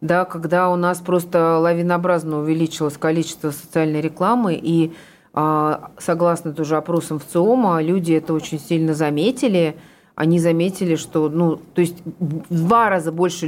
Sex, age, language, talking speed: female, 30-49, Russian, 140 wpm